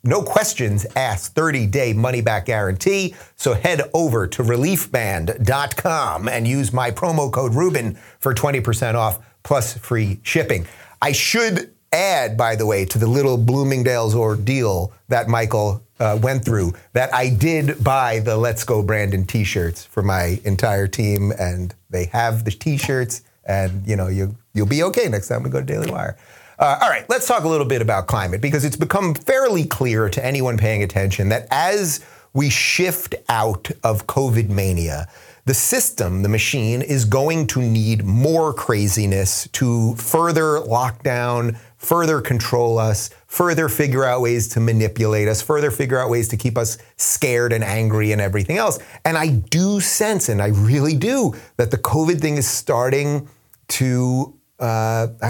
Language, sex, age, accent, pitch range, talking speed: English, male, 30-49, American, 110-135 Hz, 160 wpm